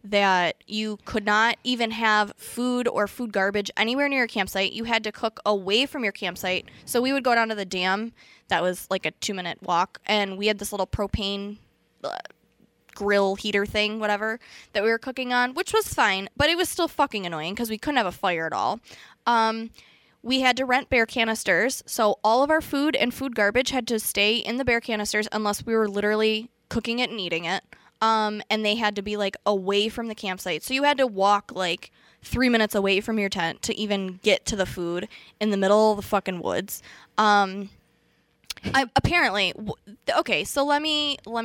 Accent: American